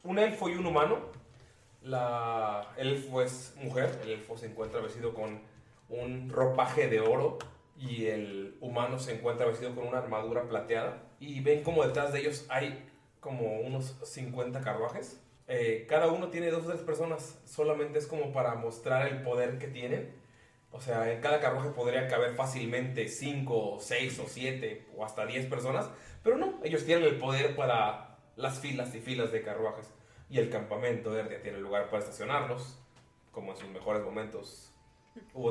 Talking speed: 170 wpm